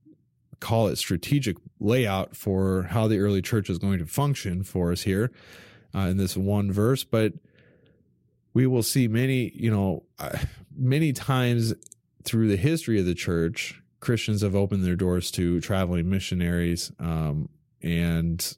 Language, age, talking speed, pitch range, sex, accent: English, 20-39, 150 wpm, 90-110 Hz, male, American